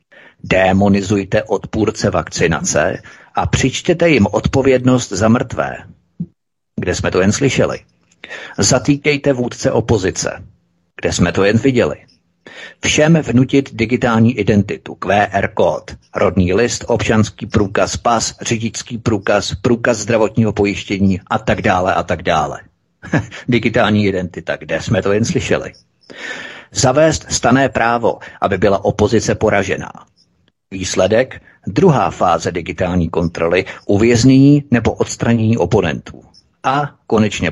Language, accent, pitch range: Czech, native, 100-130 Hz